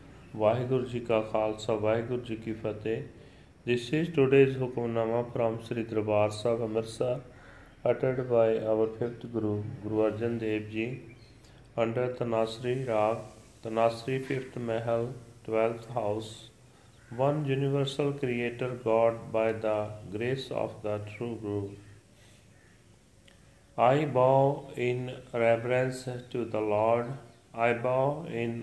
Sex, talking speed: male, 115 wpm